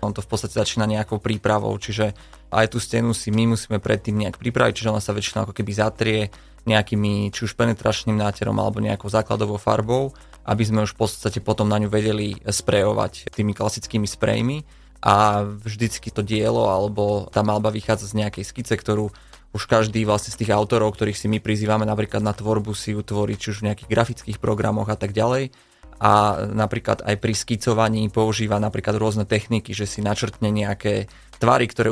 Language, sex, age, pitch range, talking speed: Slovak, male, 20-39, 105-110 Hz, 180 wpm